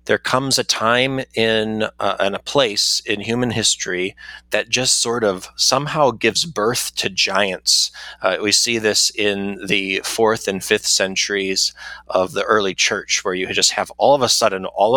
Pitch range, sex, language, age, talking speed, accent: 95-115 Hz, male, English, 30-49, 175 wpm, American